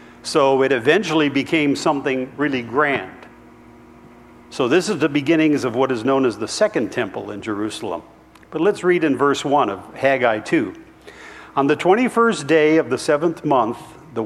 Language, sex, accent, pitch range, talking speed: English, male, American, 130-160 Hz, 170 wpm